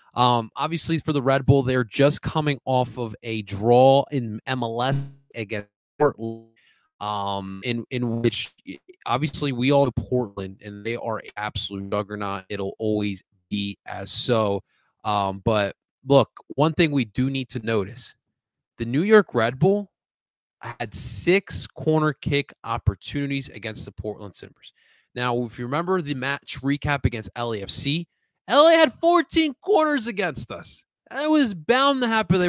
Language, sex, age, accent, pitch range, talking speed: English, male, 20-39, American, 115-165 Hz, 150 wpm